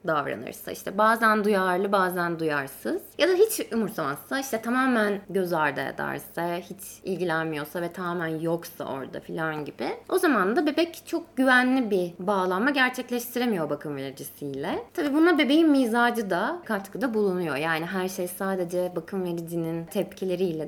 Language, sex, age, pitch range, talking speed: Turkish, female, 20-39, 175-255 Hz, 140 wpm